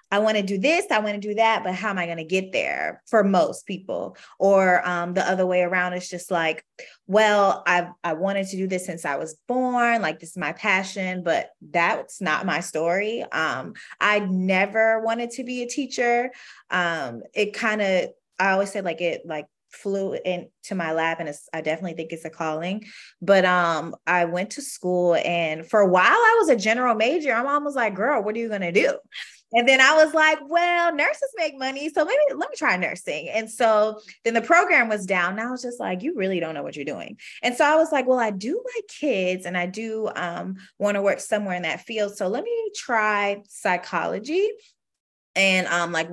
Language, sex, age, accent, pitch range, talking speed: English, female, 20-39, American, 175-230 Hz, 215 wpm